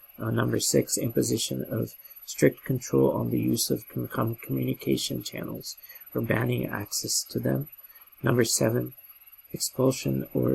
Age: 40-59